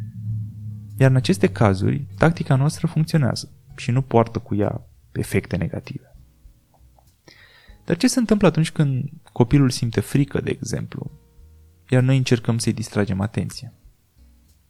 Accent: native